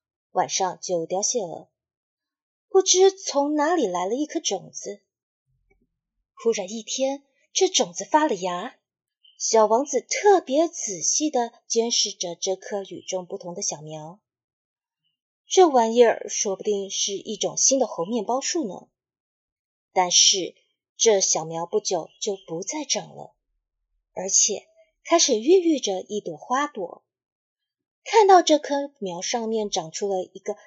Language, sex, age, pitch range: Chinese, female, 30-49, 190-310 Hz